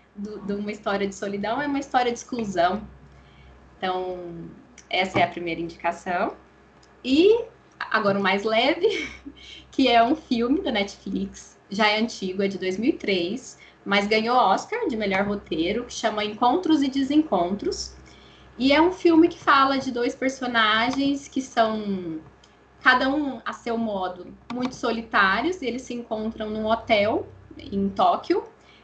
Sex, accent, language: female, Brazilian, Portuguese